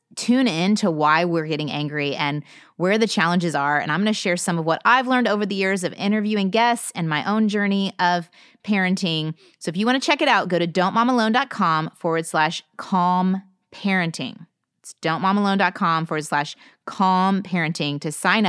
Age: 30-49